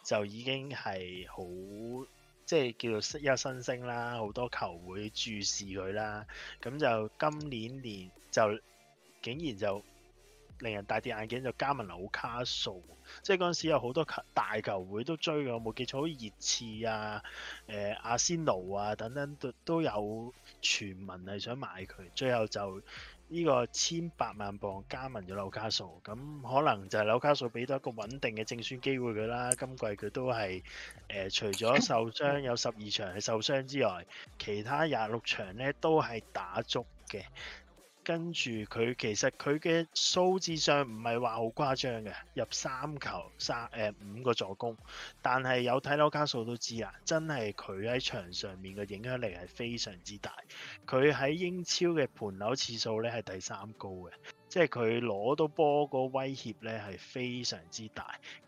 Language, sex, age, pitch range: Chinese, male, 20-39, 105-135 Hz